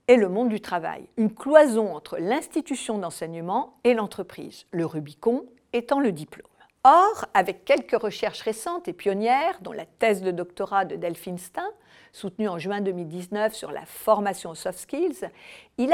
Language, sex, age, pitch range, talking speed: French, female, 50-69, 190-265 Hz, 160 wpm